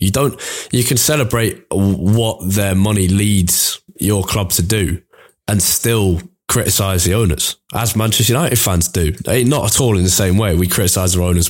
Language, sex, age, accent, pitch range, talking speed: English, male, 20-39, British, 85-100 Hz, 175 wpm